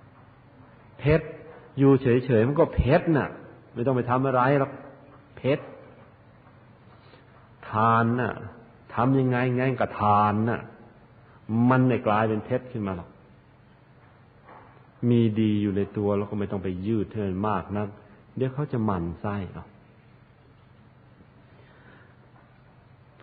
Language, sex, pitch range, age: Thai, male, 100-125 Hz, 50-69